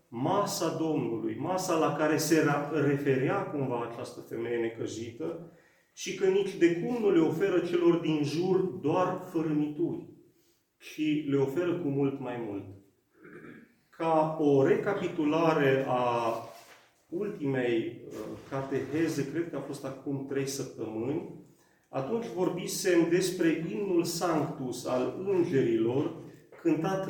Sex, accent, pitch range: male, native, 140-185 Hz